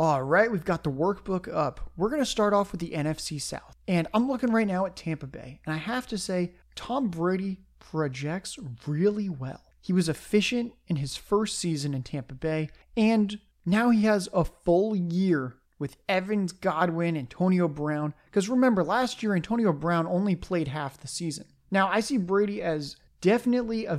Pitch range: 155-195 Hz